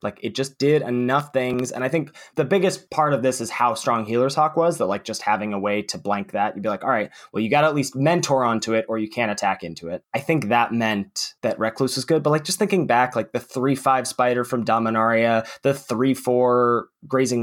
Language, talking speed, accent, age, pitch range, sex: English, 245 wpm, American, 20-39, 105-140 Hz, male